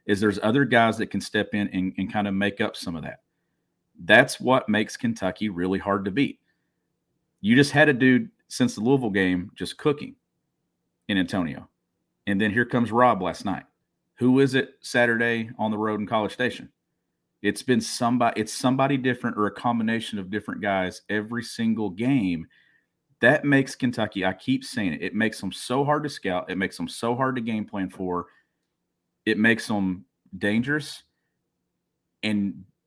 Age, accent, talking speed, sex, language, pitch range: 40-59, American, 180 wpm, male, English, 100-125 Hz